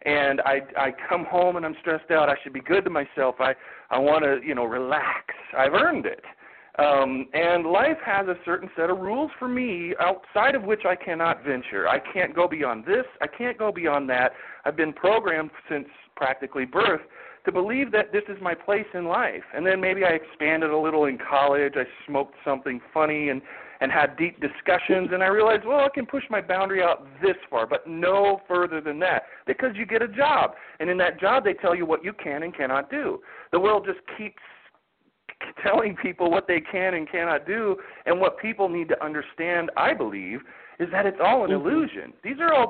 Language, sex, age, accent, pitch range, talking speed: English, male, 40-59, American, 145-205 Hz, 215 wpm